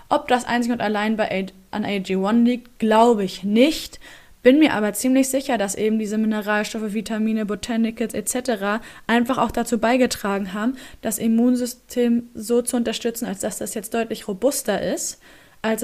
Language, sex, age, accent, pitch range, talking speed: German, female, 20-39, German, 205-240 Hz, 165 wpm